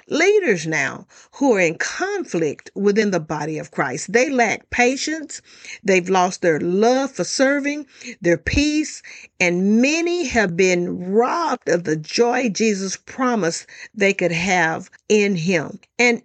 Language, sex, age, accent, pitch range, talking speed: English, female, 50-69, American, 195-265 Hz, 140 wpm